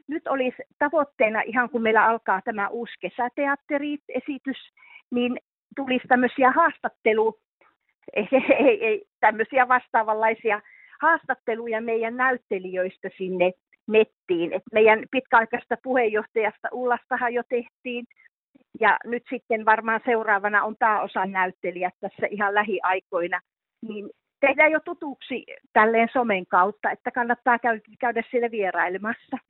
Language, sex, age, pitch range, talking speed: Finnish, female, 40-59, 200-255 Hz, 105 wpm